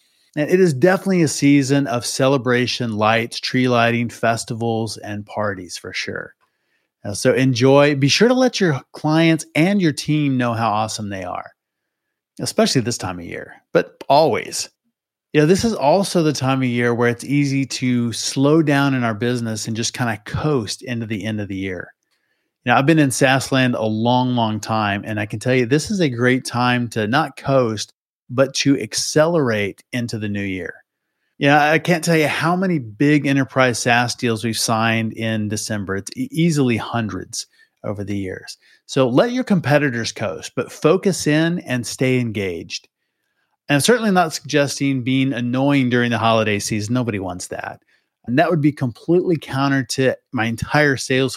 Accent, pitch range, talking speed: American, 115-150 Hz, 180 wpm